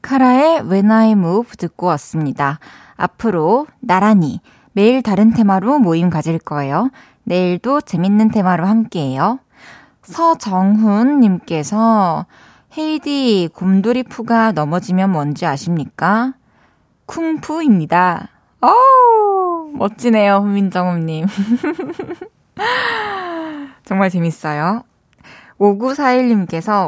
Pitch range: 175-240 Hz